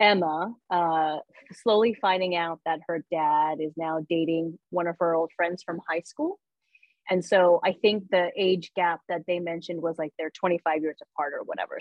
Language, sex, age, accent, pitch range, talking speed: English, female, 30-49, American, 165-190 Hz, 190 wpm